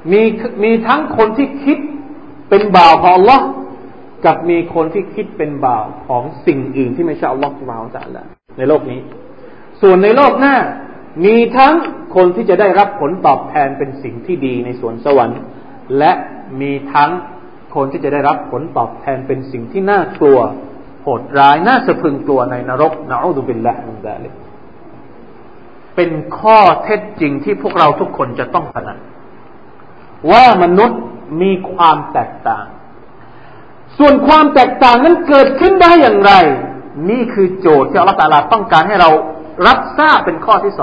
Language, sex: Thai, male